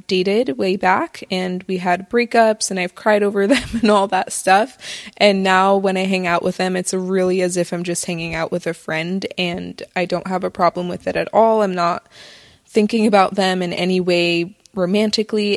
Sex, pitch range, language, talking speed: female, 180-205 Hz, English, 210 wpm